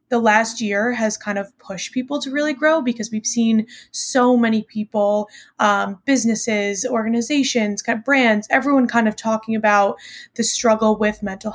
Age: 20-39